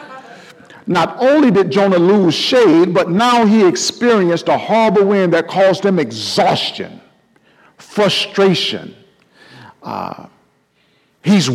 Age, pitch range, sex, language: 50-69, 130-195 Hz, male, English